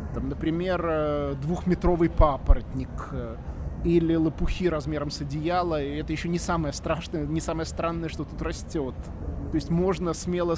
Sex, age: male, 20-39